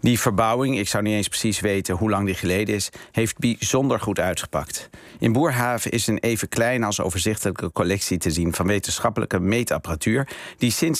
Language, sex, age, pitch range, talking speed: Dutch, male, 50-69, 90-115 Hz, 180 wpm